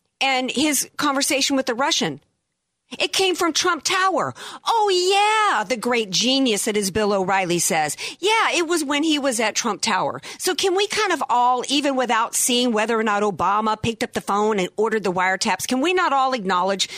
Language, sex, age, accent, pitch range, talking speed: English, female, 50-69, American, 205-305 Hz, 200 wpm